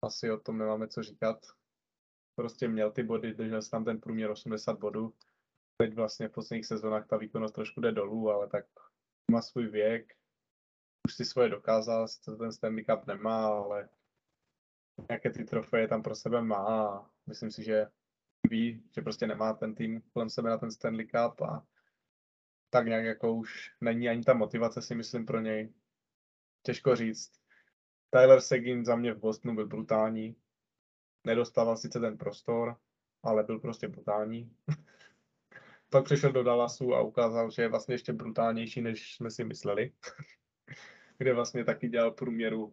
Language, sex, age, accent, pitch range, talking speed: Czech, male, 20-39, native, 110-130 Hz, 160 wpm